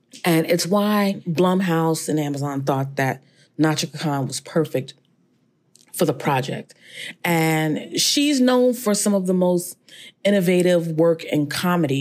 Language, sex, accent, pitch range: English, female, American, 145-180 Hz